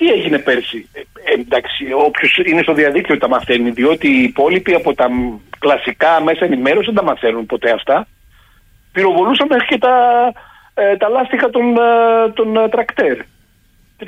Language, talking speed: Greek, 145 wpm